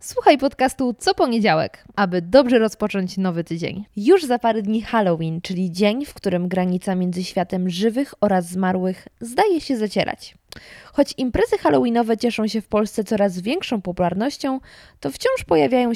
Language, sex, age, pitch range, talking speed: Polish, female, 20-39, 195-265 Hz, 150 wpm